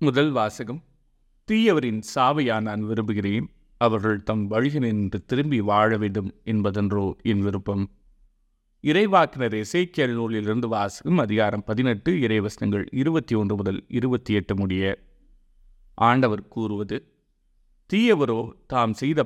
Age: 30-49